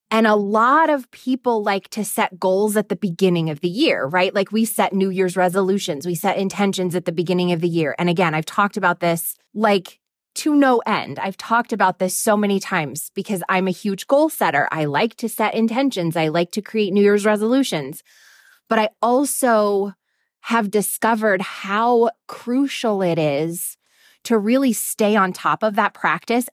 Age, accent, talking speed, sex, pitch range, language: 20-39, American, 190 wpm, female, 180-230 Hz, English